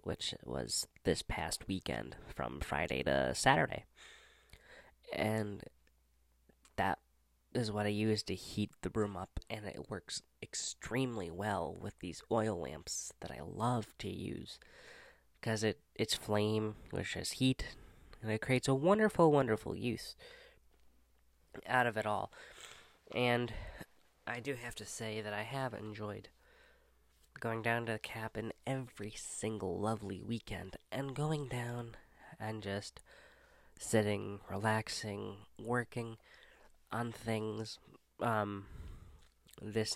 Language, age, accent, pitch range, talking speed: English, 20-39, American, 100-115 Hz, 125 wpm